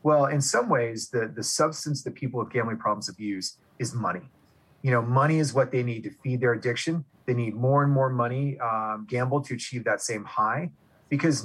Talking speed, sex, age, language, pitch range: 210 wpm, male, 30-49, English, 110-135 Hz